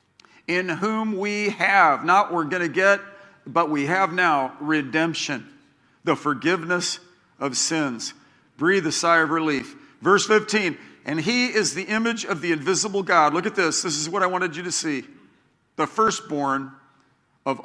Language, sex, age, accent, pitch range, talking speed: English, male, 50-69, American, 170-215 Hz, 160 wpm